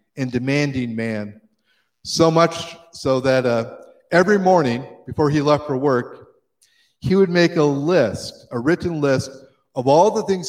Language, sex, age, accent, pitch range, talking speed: English, male, 40-59, American, 130-170 Hz, 155 wpm